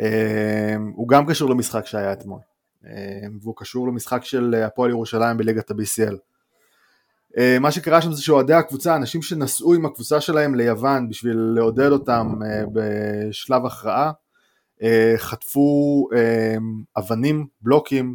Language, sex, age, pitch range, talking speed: Hebrew, male, 20-39, 110-135 Hz, 130 wpm